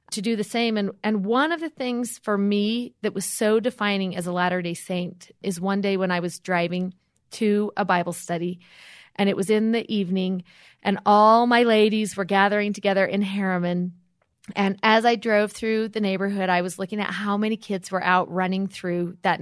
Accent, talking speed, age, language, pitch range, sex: American, 200 wpm, 30-49, English, 185-215 Hz, female